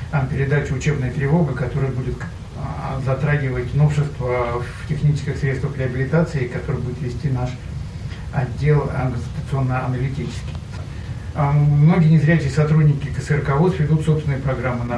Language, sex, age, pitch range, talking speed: Russian, male, 60-79, 125-155 Hz, 105 wpm